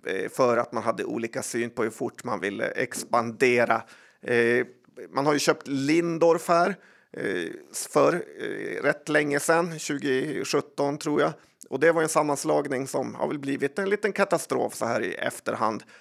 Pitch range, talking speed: 130-165 Hz, 155 wpm